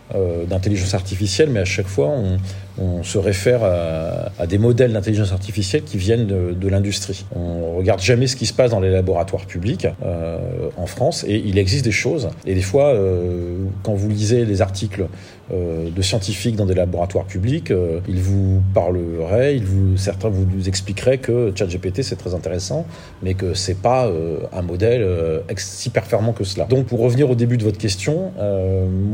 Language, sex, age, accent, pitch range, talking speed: French, male, 40-59, French, 95-115 Hz, 195 wpm